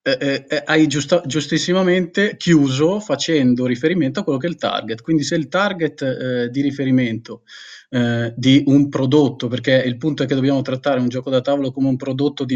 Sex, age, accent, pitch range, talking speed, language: male, 20-39, native, 125-155 Hz, 185 wpm, Italian